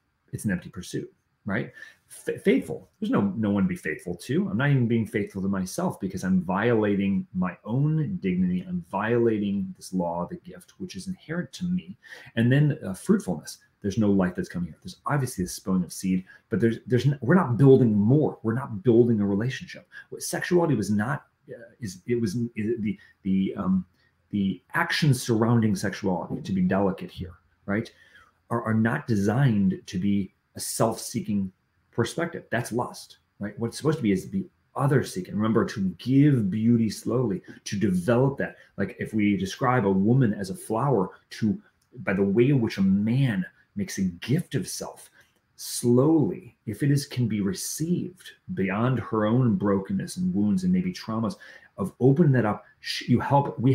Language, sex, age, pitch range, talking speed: English, male, 30-49, 100-155 Hz, 180 wpm